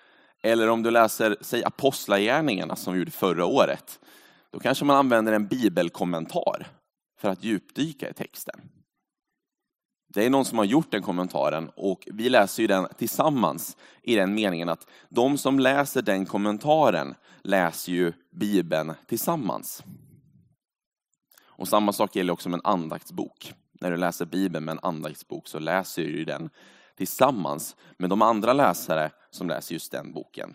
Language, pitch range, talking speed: Swedish, 95-140 Hz, 155 wpm